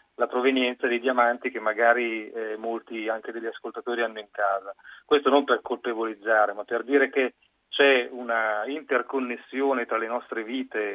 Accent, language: native, Italian